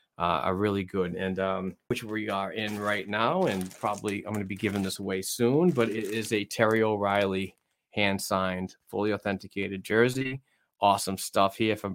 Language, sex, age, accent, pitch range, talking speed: English, male, 30-49, American, 95-115 Hz, 185 wpm